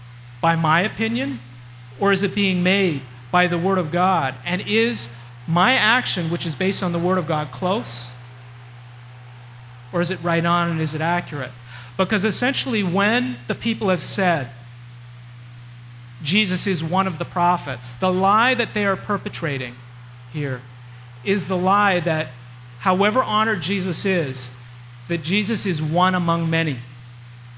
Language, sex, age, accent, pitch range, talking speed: English, male, 40-59, American, 120-195 Hz, 150 wpm